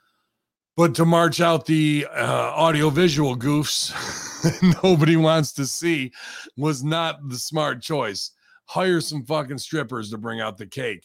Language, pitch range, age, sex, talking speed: English, 120-160 Hz, 40-59, male, 140 wpm